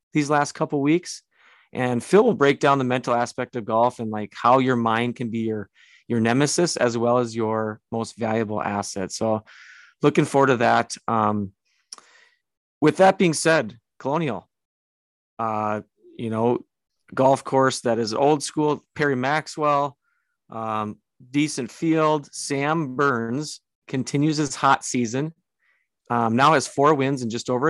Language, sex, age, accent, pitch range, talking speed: English, male, 30-49, American, 115-140 Hz, 155 wpm